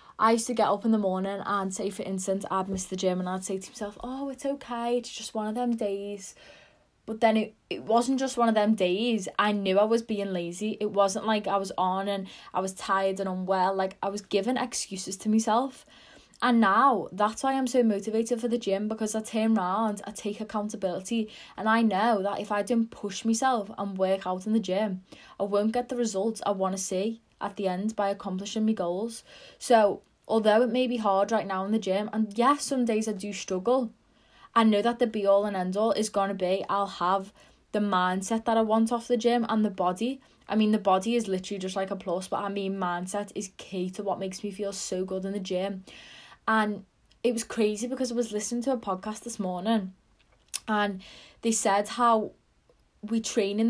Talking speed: 225 wpm